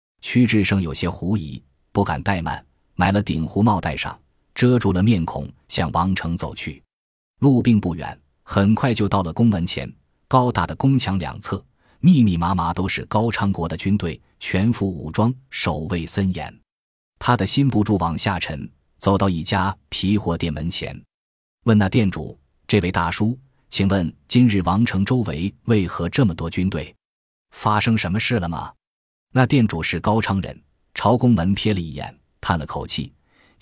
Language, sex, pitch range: Chinese, male, 85-110 Hz